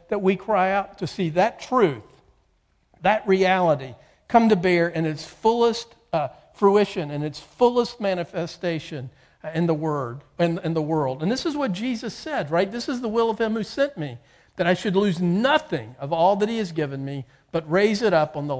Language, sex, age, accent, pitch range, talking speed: English, male, 50-69, American, 145-185 Hz, 205 wpm